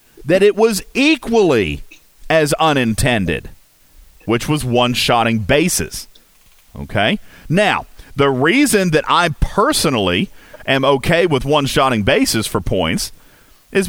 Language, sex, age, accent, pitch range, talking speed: English, male, 40-59, American, 115-165 Hz, 110 wpm